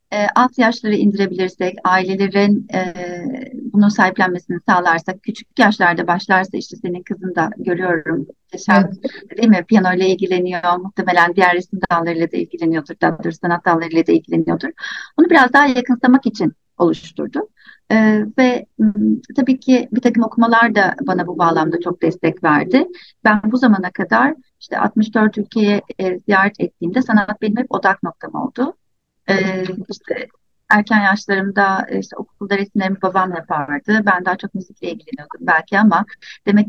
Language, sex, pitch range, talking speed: Turkish, female, 180-225 Hz, 140 wpm